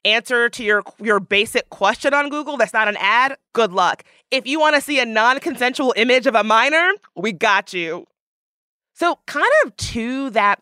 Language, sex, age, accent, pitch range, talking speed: English, female, 30-49, American, 180-240 Hz, 185 wpm